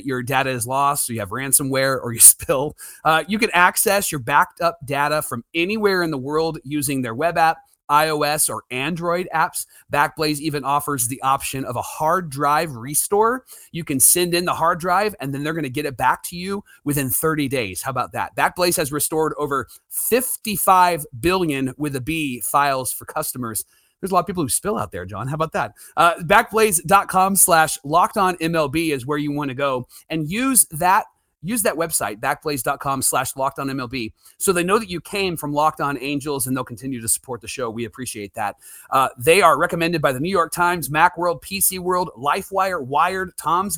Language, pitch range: English, 135-175 Hz